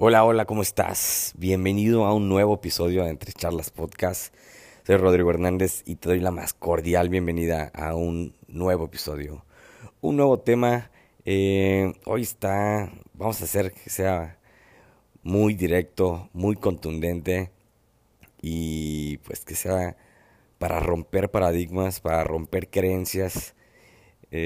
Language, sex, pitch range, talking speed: Spanish, male, 85-110 Hz, 130 wpm